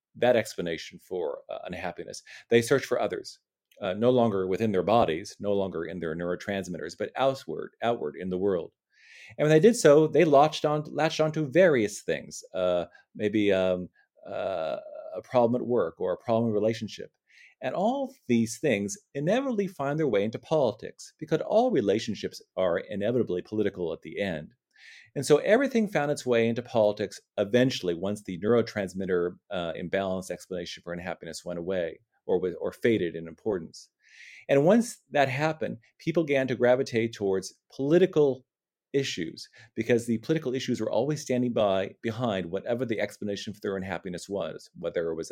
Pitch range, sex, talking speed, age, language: 100-155 Hz, male, 165 wpm, 40-59, English